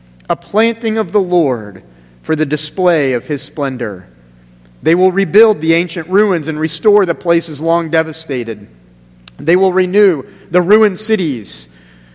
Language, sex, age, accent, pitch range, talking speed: English, male, 40-59, American, 140-195 Hz, 145 wpm